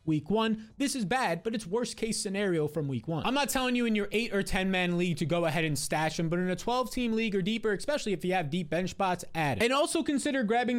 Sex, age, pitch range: male, 20-39, 185-235 Hz